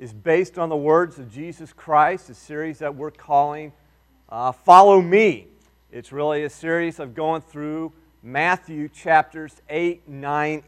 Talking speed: 150 wpm